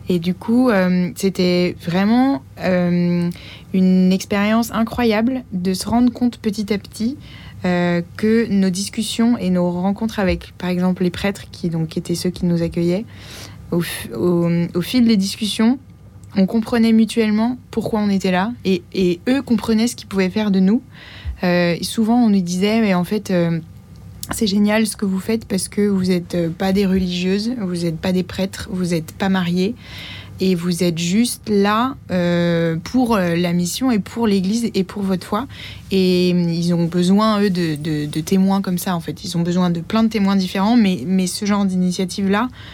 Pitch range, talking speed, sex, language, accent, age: 175-210 Hz, 185 wpm, female, French, French, 20-39